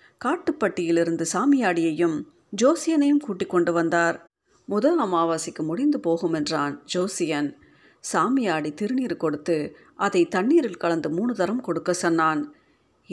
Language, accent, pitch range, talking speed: Tamil, native, 165-250 Hz, 100 wpm